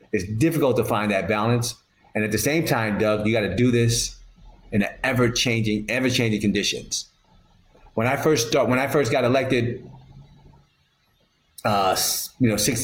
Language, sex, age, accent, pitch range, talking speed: English, male, 30-49, American, 105-125 Hz, 165 wpm